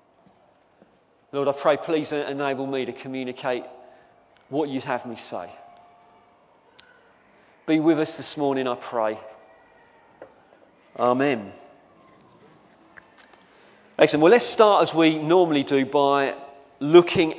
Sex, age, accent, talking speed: male, 40-59, British, 105 wpm